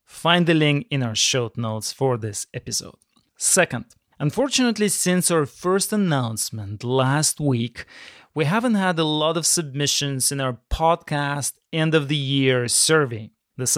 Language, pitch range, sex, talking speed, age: English, 135-185 Hz, male, 135 wpm, 30-49